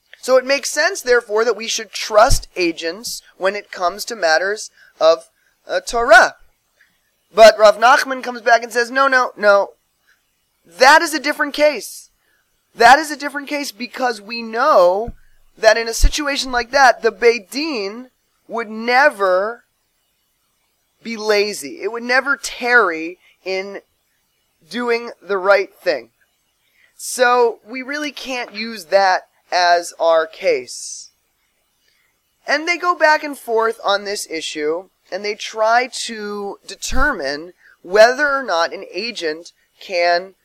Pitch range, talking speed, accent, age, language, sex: 195-265 Hz, 135 wpm, American, 20-39, English, male